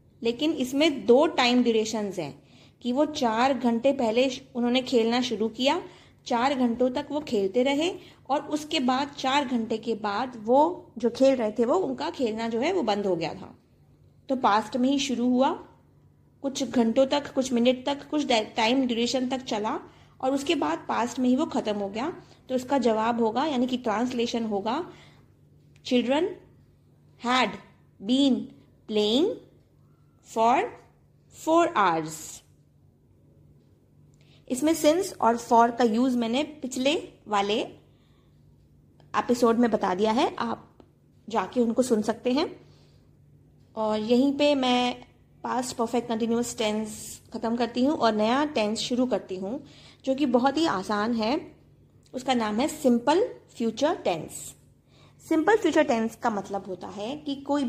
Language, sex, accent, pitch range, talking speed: Hindi, female, native, 225-280 Hz, 150 wpm